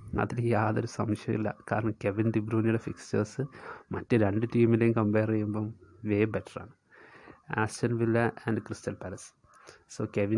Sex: male